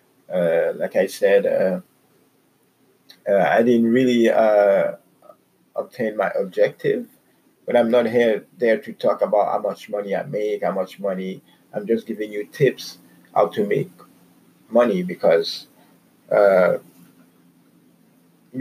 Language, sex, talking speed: English, male, 130 wpm